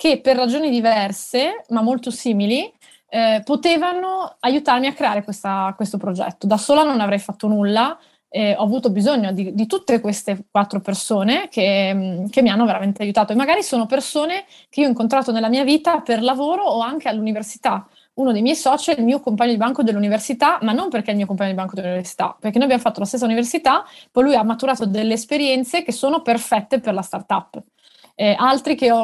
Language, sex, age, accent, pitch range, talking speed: Italian, female, 20-39, native, 210-270 Hz, 200 wpm